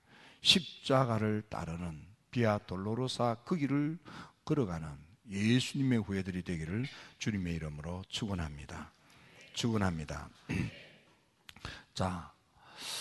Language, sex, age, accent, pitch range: Korean, male, 50-69, native, 90-120 Hz